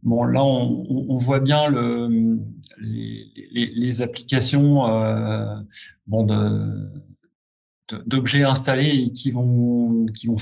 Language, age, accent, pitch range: French, 40-59, French, 115-145 Hz